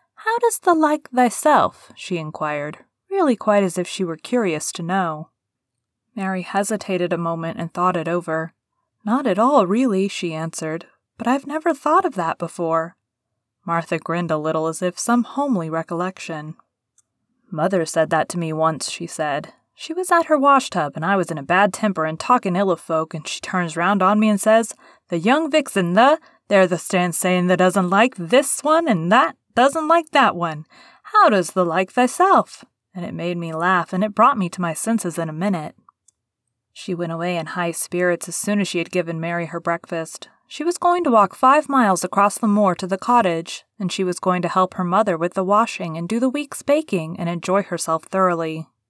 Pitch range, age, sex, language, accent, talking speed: 170-230 Hz, 30-49, female, English, American, 205 wpm